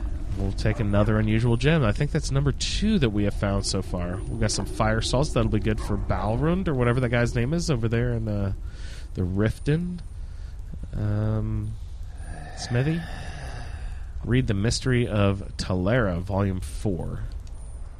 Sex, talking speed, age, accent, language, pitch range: male, 155 wpm, 30-49, American, English, 85-120 Hz